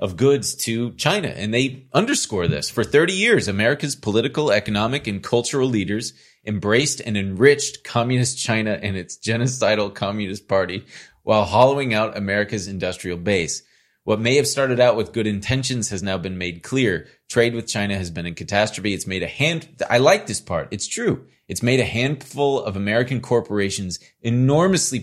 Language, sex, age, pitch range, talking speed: English, male, 30-49, 95-120 Hz, 170 wpm